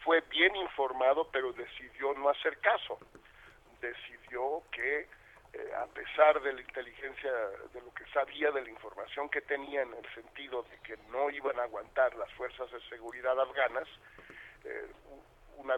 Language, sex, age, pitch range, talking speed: Spanish, male, 50-69, 130-155 Hz, 155 wpm